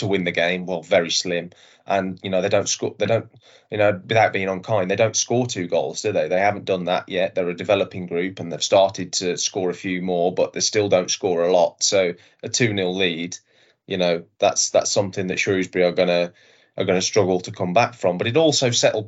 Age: 20-39